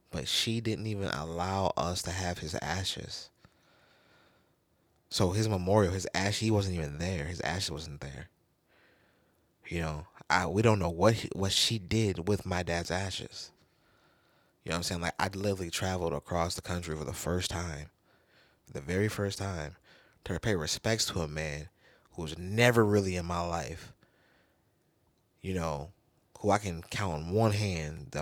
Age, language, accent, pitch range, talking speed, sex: 20-39, English, American, 80-100 Hz, 175 wpm, male